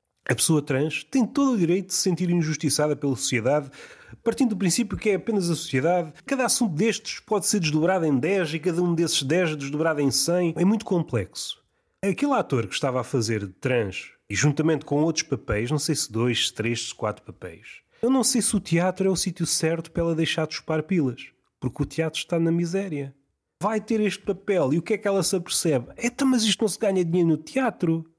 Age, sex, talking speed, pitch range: 30-49, male, 215 wpm, 155-225 Hz